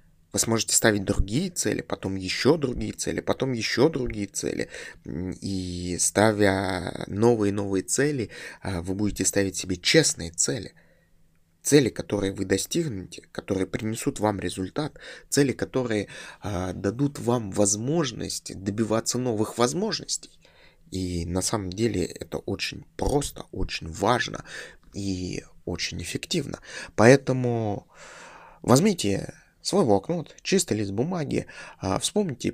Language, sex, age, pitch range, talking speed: Russian, male, 20-39, 95-140 Hz, 110 wpm